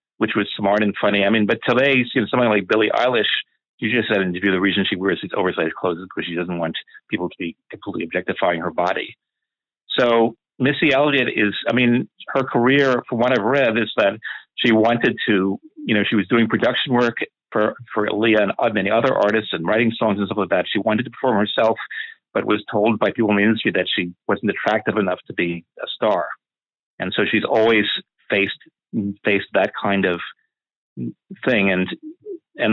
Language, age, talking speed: English, 50-69, 200 wpm